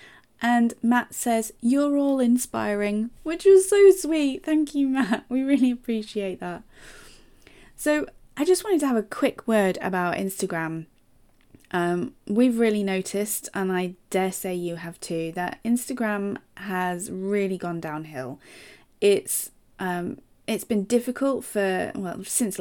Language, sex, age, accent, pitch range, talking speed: English, female, 30-49, British, 175-240 Hz, 140 wpm